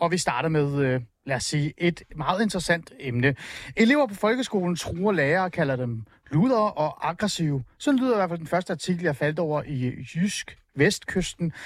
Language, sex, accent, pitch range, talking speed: Danish, male, native, 140-205 Hz, 185 wpm